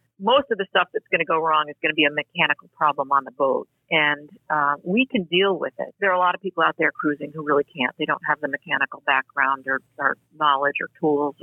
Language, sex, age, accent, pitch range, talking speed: English, female, 50-69, American, 155-200 Hz, 255 wpm